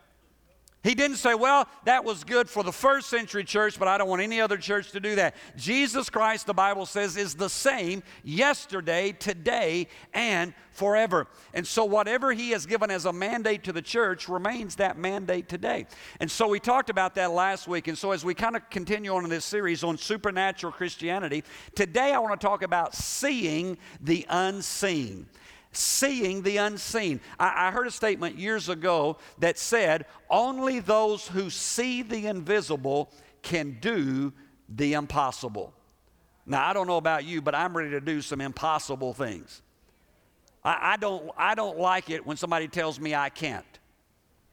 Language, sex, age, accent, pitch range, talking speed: English, male, 50-69, American, 160-210 Hz, 175 wpm